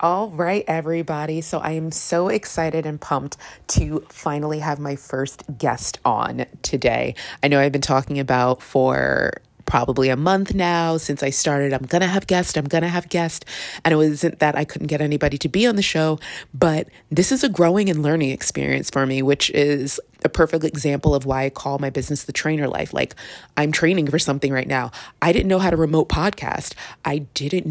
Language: English